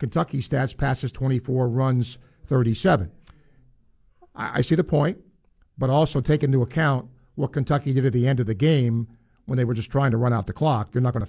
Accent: American